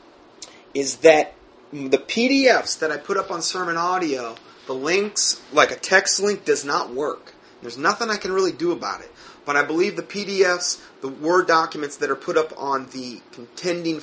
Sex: male